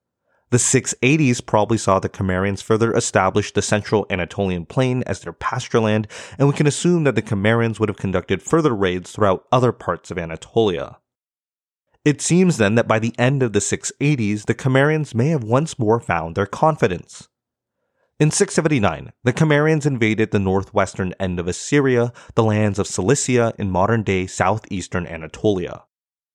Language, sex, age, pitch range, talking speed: English, male, 30-49, 100-130 Hz, 160 wpm